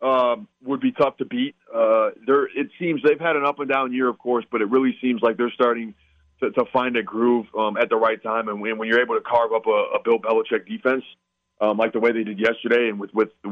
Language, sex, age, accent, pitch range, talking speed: English, male, 30-49, American, 115-140 Hz, 255 wpm